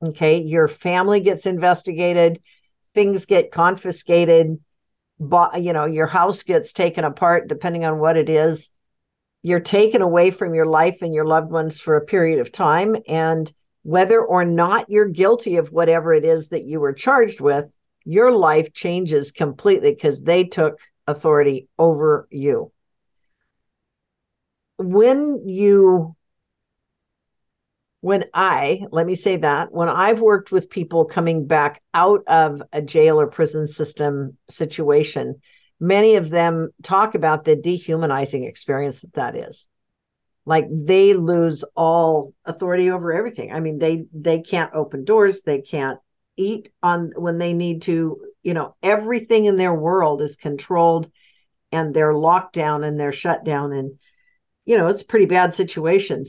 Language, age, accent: English, 50-69, American